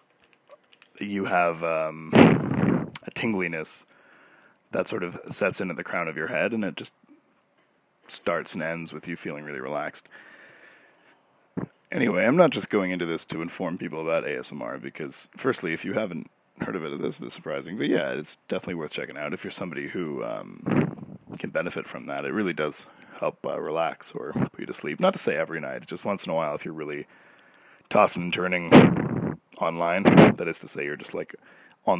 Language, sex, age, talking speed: English, male, 30-49, 195 wpm